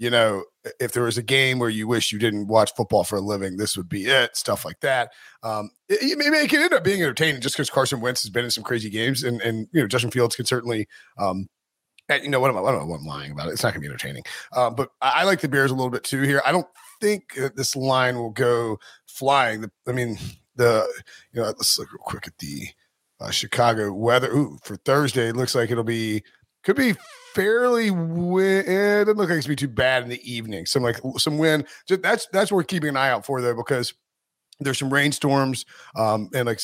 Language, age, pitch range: English, 30-49, 115-150 Hz